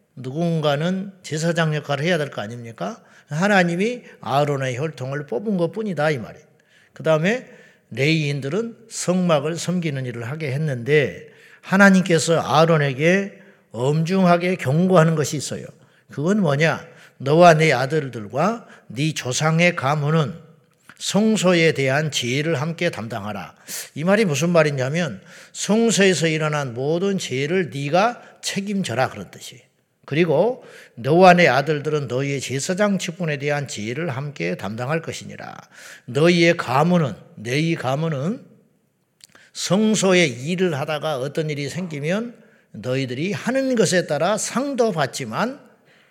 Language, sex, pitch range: Korean, male, 145-185 Hz